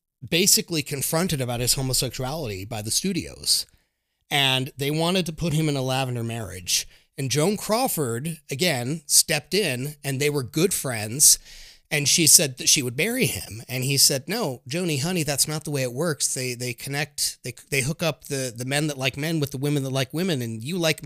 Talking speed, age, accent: 200 wpm, 30-49, American